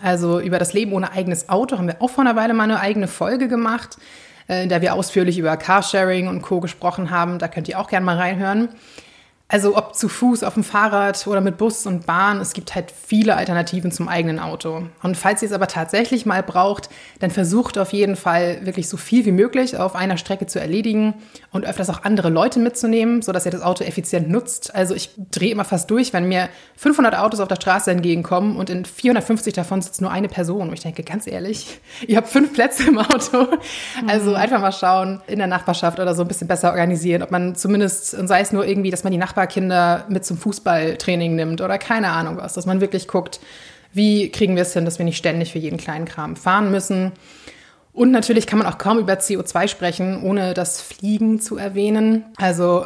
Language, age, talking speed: German, 20-39, 215 wpm